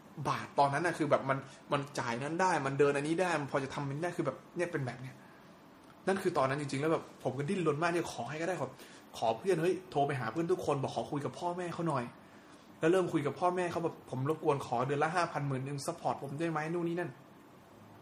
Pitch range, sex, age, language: 130-165 Hz, male, 20-39, Thai